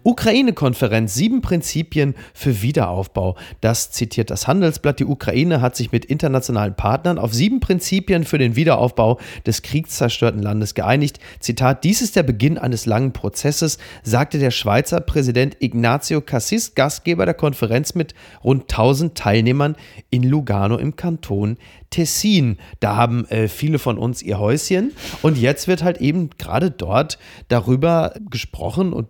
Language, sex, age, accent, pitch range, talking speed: German, male, 30-49, German, 115-160 Hz, 145 wpm